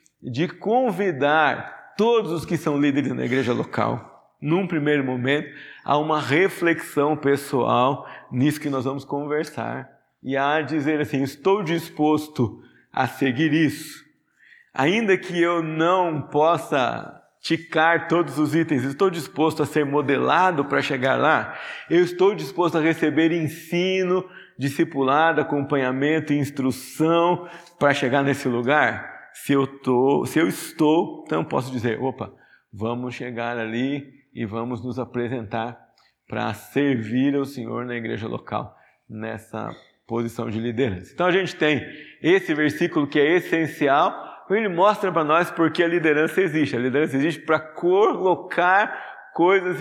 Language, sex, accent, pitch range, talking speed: Portuguese, male, Brazilian, 135-170 Hz, 135 wpm